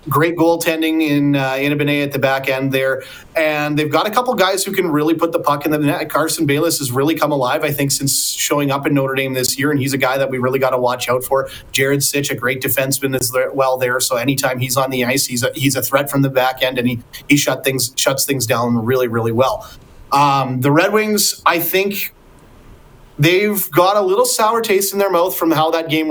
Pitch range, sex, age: 135-155 Hz, male, 30-49